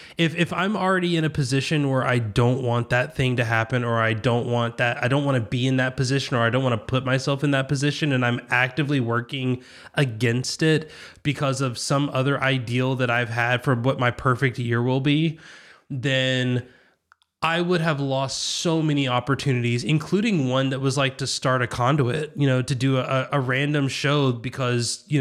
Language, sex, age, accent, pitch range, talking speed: English, male, 20-39, American, 125-150 Hz, 205 wpm